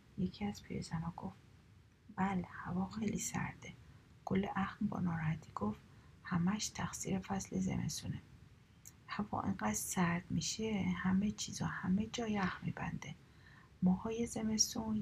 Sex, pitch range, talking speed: female, 170-205 Hz, 115 wpm